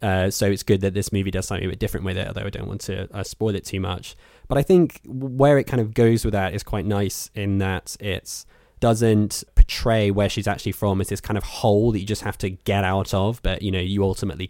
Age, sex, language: 20-39, male, English